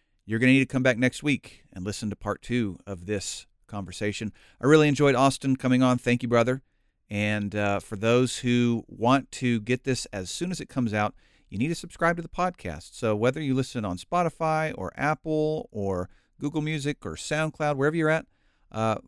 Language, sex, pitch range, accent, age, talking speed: English, male, 105-145 Hz, American, 40-59, 205 wpm